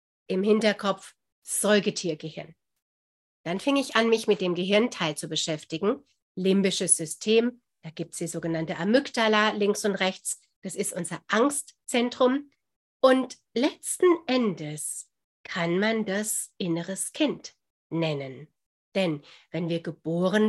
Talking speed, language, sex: 120 wpm, German, female